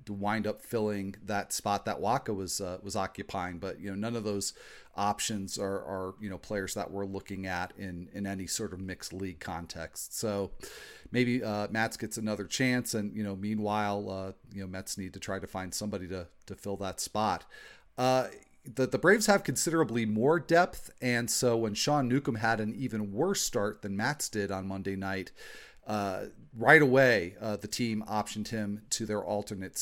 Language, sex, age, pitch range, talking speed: English, male, 40-59, 100-115 Hz, 195 wpm